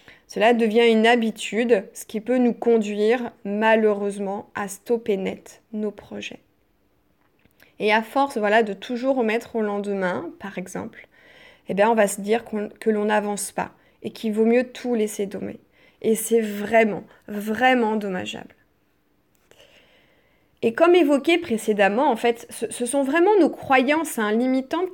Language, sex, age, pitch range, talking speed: French, female, 20-39, 205-255 Hz, 150 wpm